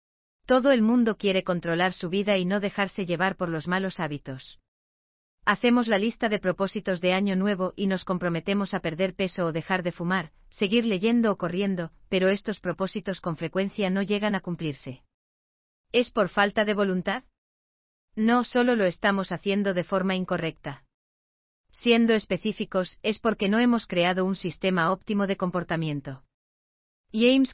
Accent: Spanish